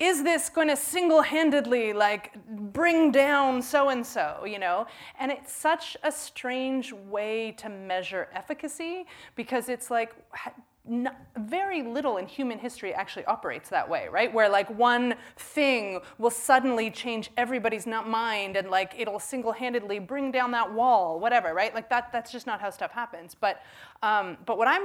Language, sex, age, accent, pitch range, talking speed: English, female, 30-49, American, 185-245 Hz, 165 wpm